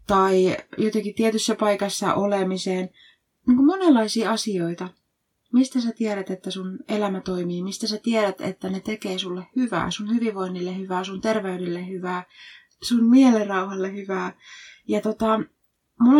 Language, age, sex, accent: Finnish, 20-39, female, native